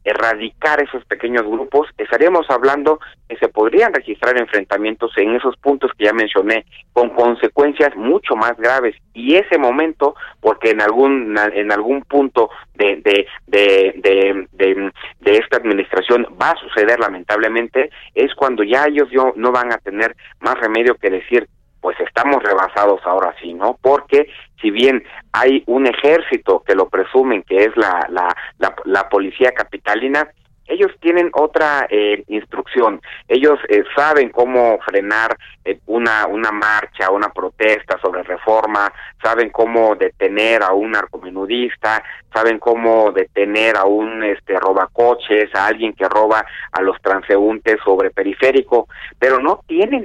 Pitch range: 105-145 Hz